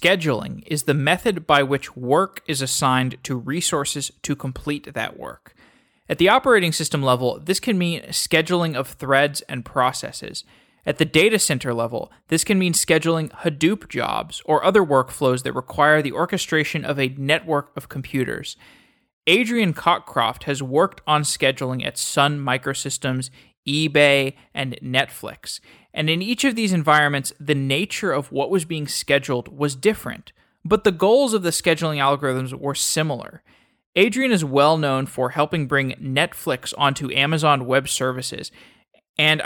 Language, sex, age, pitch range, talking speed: English, male, 20-39, 130-160 Hz, 150 wpm